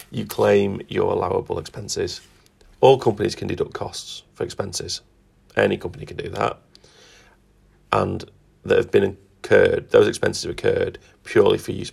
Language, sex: English, male